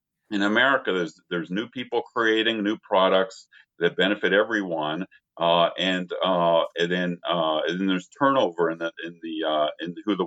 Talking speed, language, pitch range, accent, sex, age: 175 wpm, English, 95-140 Hz, American, male, 50-69